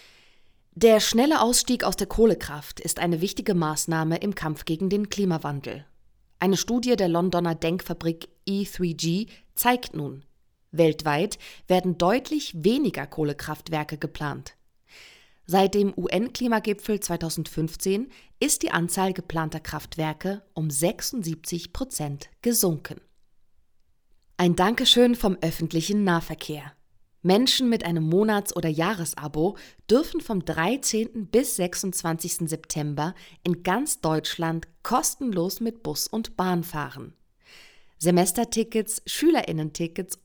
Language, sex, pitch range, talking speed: German, female, 160-215 Hz, 105 wpm